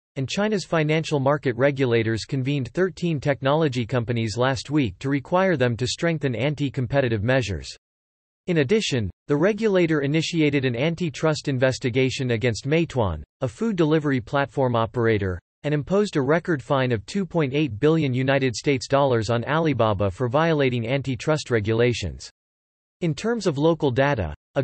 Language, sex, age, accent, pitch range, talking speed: English, male, 40-59, American, 120-160 Hz, 130 wpm